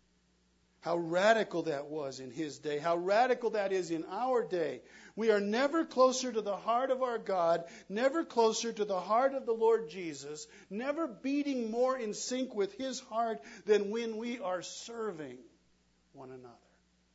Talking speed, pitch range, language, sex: 170 wpm, 120-180 Hz, English, male